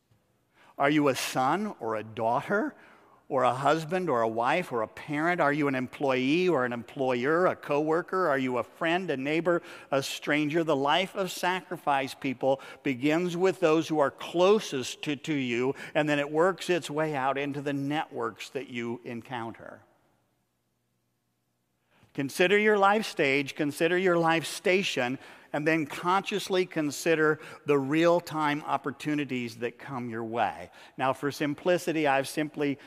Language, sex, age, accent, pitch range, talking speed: English, male, 50-69, American, 130-165 Hz, 155 wpm